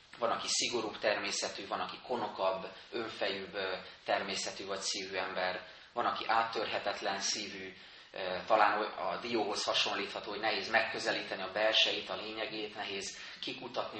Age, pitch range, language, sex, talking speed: 30-49, 95-115 Hz, Hungarian, male, 125 wpm